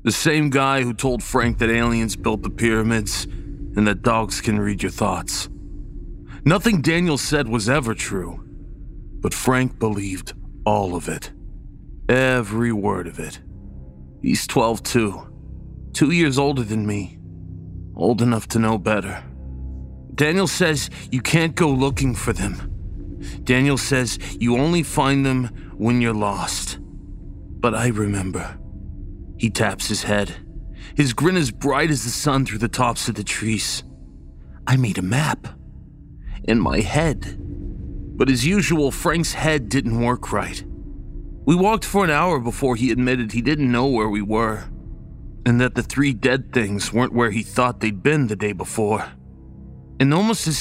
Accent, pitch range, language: American, 95-130 Hz, English